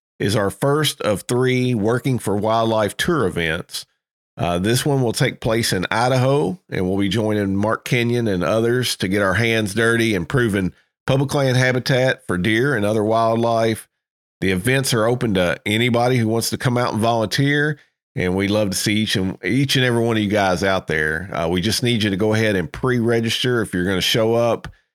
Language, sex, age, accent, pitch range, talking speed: English, male, 40-59, American, 100-125 Hz, 205 wpm